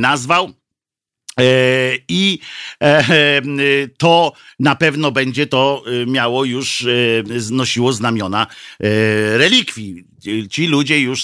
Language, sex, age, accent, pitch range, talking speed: Polish, male, 50-69, native, 110-135 Hz, 95 wpm